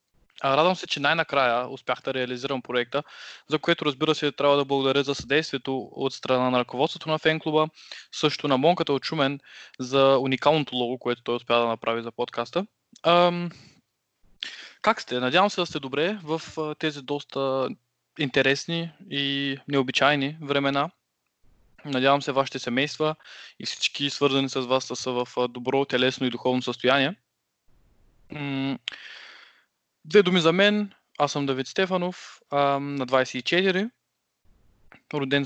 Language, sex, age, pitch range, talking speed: Bulgarian, male, 20-39, 125-155 Hz, 135 wpm